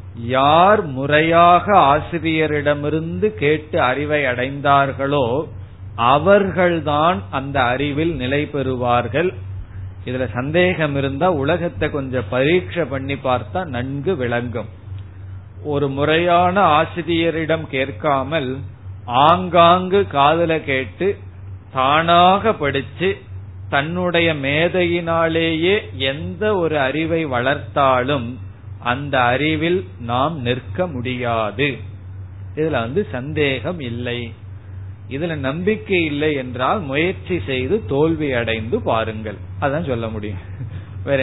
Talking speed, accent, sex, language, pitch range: 85 wpm, native, male, Tamil, 105-160 Hz